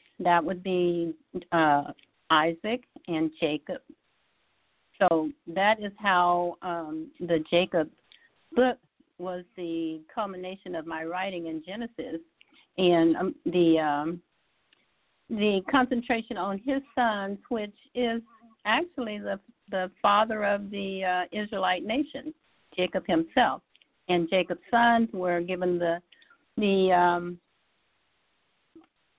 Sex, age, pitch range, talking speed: female, 60-79, 175-225 Hz, 110 wpm